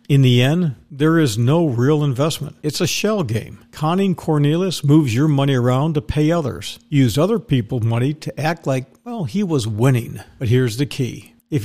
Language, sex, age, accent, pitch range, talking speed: English, male, 50-69, American, 125-160 Hz, 190 wpm